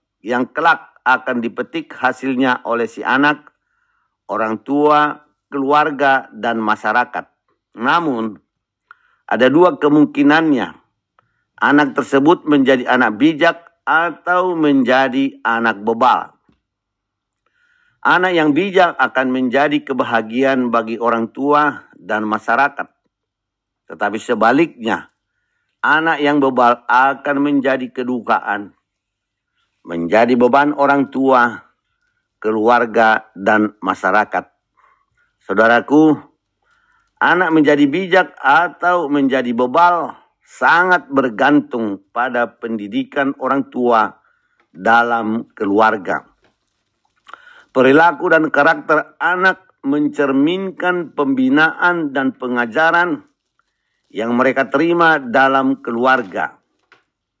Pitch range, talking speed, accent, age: 125-160 Hz, 85 wpm, native, 50-69